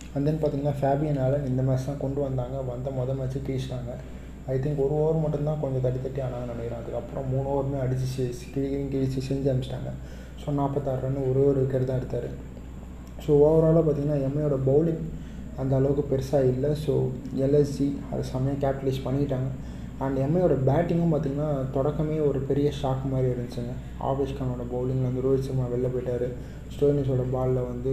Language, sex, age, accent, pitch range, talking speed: Tamil, male, 20-39, native, 125-145 Hz, 155 wpm